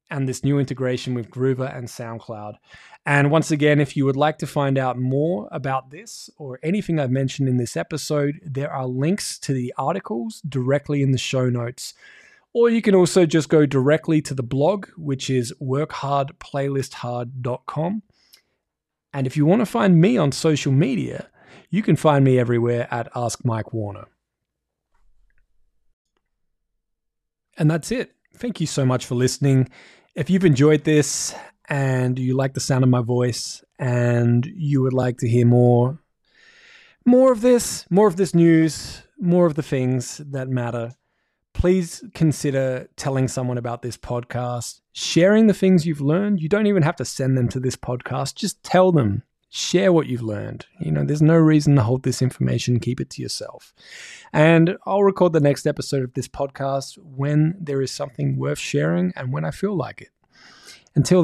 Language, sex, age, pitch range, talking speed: English, male, 20-39, 130-165 Hz, 170 wpm